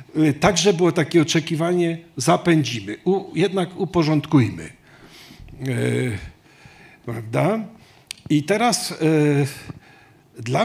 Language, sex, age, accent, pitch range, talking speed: Polish, male, 50-69, native, 135-170 Hz, 60 wpm